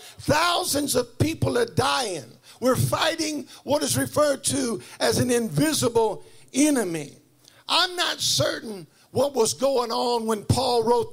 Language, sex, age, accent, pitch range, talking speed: English, male, 50-69, American, 230-315 Hz, 135 wpm